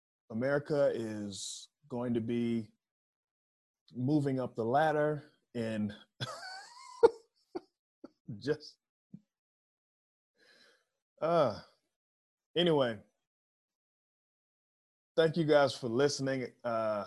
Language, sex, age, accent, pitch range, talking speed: English, male, 20-39, American, 115-155 Hz, 65 wpm